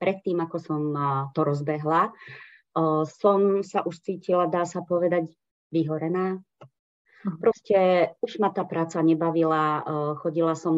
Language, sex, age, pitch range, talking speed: Slovak, female, 30-49, 155-195 Hz, 115 wpm